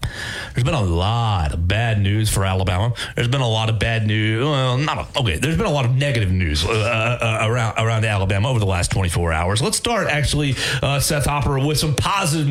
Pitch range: 115-150 Hz